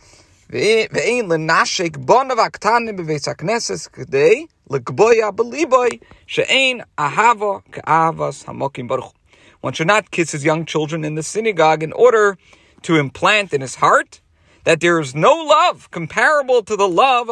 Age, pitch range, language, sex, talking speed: 40-59, 145-220 Hz, English, male, 90 wpm